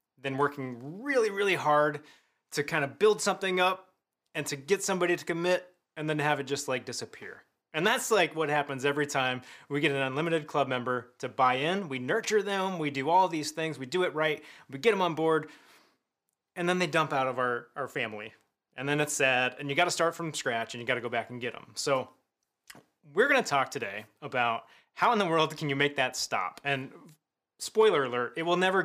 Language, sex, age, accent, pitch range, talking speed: English, male, 30-49, American, 130-170 Hz, 225 wpm